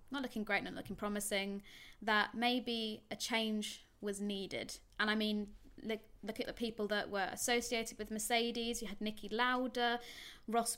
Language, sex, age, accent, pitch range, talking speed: English, female, 20-39, British, 195-235 Hz, 165 wpm